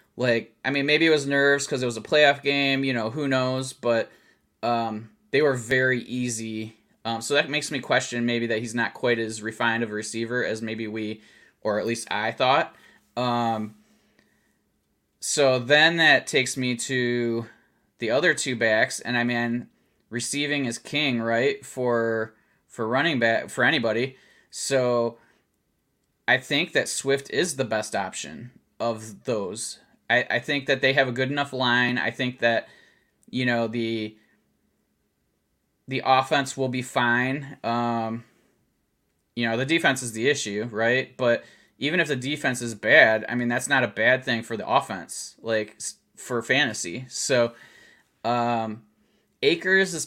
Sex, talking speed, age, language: male, 160 wpm, 20-39, English